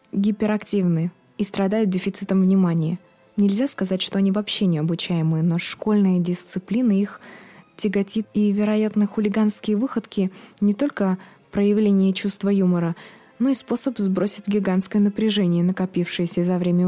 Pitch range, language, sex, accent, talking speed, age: 185-210 Hz, Russian, female, native, 125 wpm, 20-39